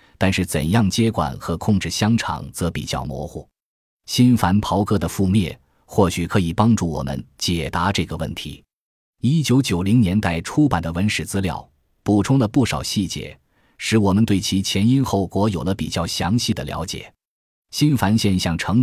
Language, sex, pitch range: Chinese, male, 85-115 Hz